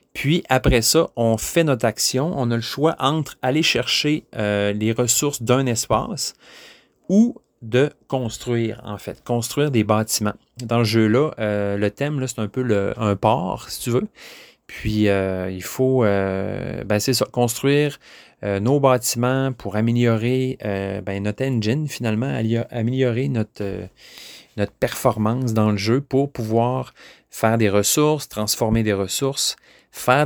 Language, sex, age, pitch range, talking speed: French, male, 30-49, 105-135 Hz, 155 wpm